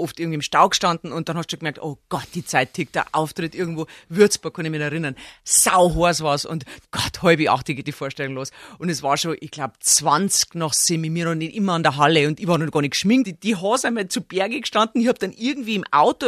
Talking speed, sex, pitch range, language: 255 wpm, female, 180-285 Hz, German